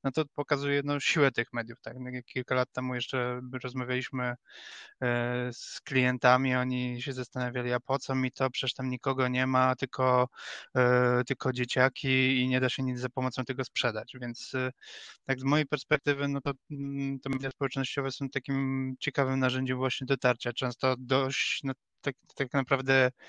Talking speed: 160 wpm